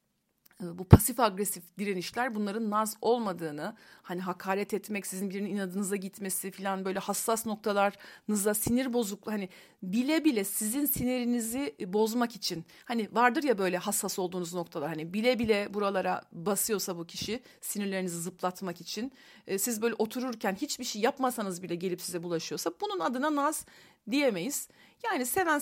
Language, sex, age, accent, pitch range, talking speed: Turkish, female, 40-59, native, 185-235 Hz, 140 wpm